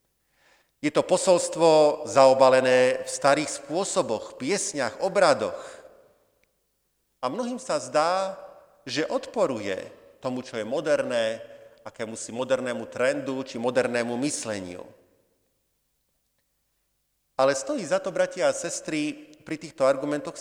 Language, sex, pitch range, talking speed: Slovak, male, 125-170 Hz, 105 wpm